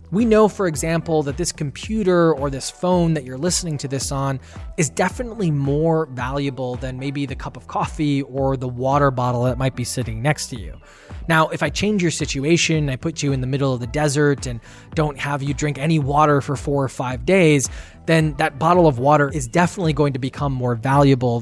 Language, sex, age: English, male, 20-39